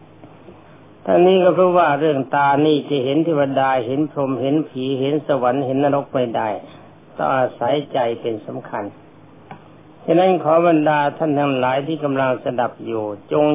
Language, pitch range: Thai, 120-150 Hz